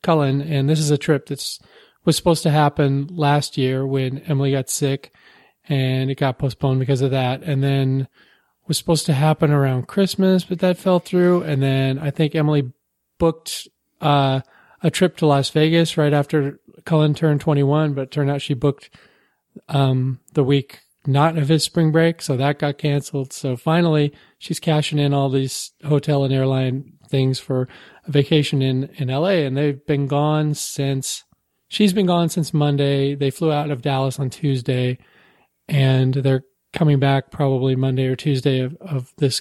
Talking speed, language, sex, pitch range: 175 wpm, English, male, 135-160 Hz